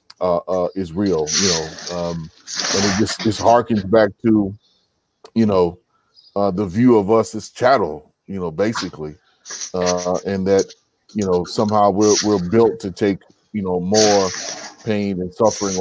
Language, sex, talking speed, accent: English, male, 160 wpm, American